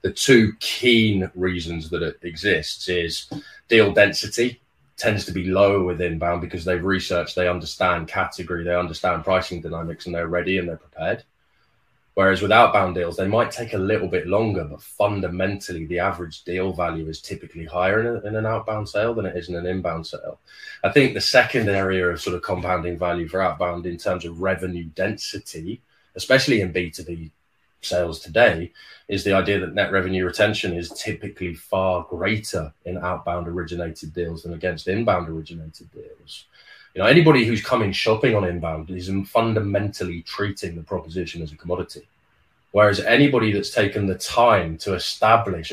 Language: English